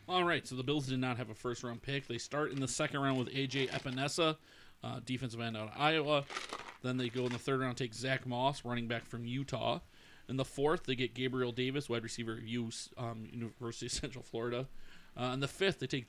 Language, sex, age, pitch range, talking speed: English, male, 40-59, 120-140 Hz, 230 wpm